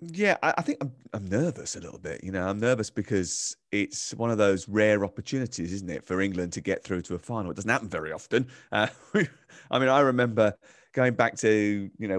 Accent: British